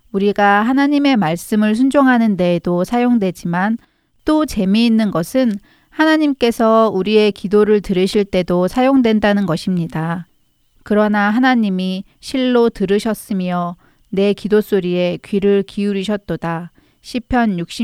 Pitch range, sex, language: 185-230 Hz, female, Korean